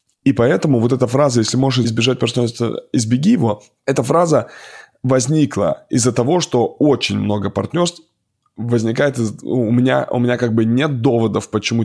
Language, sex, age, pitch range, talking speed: Russian, male, 20-39, 110-125 Hz, 150 wpm